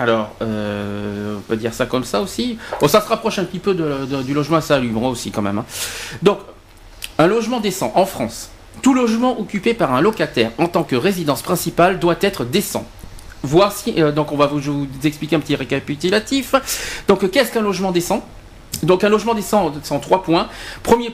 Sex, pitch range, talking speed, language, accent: male, 130-205 Hz, 200 wpm, French, French